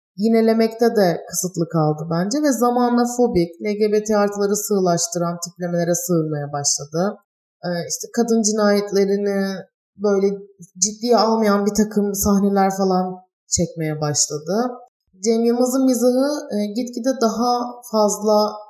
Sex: female